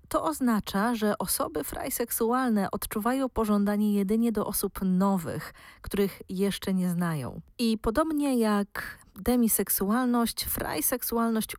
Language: Polish